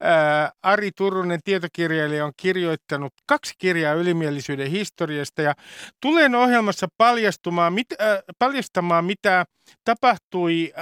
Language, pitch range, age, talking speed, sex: Finnish, 160-220 Hz, 50-69, 80 wpm, male